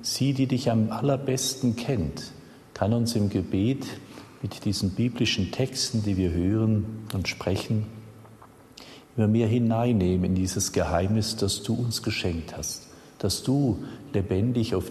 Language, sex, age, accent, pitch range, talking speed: German, male, 50-69, German, 95-120 Hz, 135 wpm